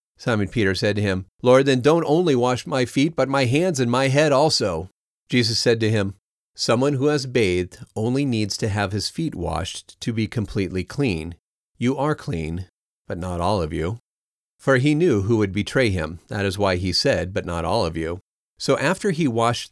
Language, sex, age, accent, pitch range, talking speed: English, male, 40-59, American, 95-130 Hz, 205 wpm